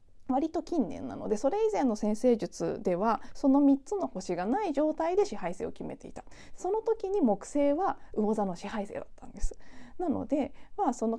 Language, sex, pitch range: Japanese, female, 200-295 Hz